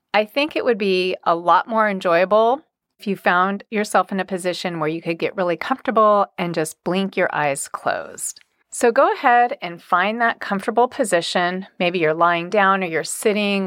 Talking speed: 190 wpm